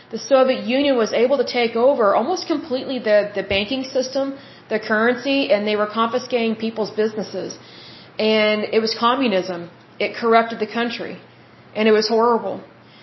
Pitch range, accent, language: 210-250 Hz, American, Bengali